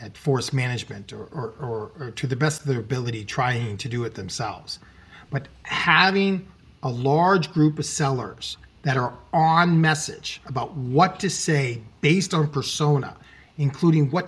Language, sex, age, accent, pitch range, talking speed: English, male, 40-59, American, 125-160 Hz, 155 wpm